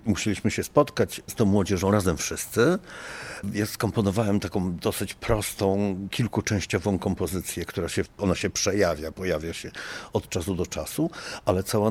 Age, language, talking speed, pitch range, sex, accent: 50-69, Polish, 140 wpm, 95-115 Hz, male, native